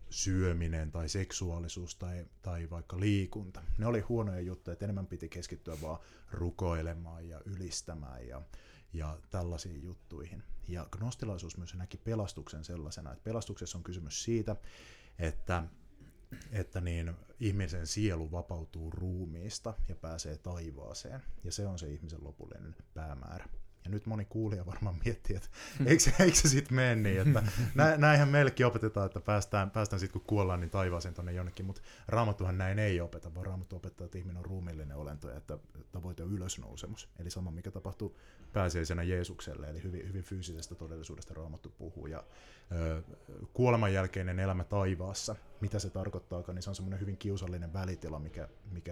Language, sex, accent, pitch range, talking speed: Finnish, male, native, 85-100 Hz, 150 wpm